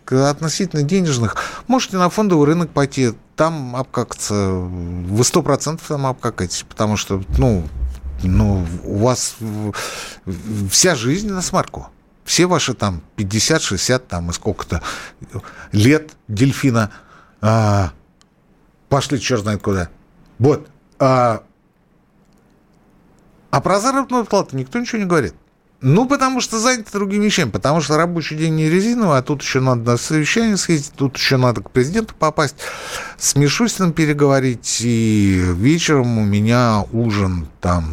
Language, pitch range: Russian, 105-175 Hz